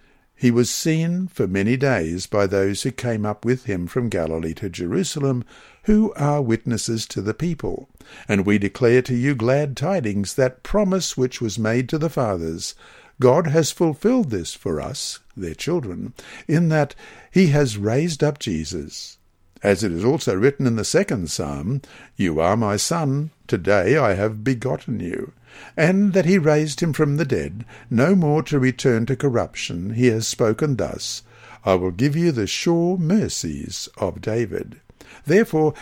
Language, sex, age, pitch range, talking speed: English, male, 60-79, 105-155 Hz, 165 wpm